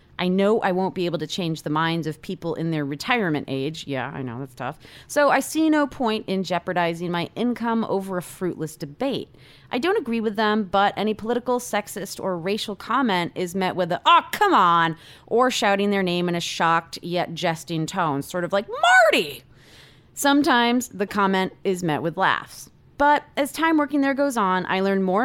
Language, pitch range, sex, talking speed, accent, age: English, 160-235 Hz, female, 200 wpm, American, 30-49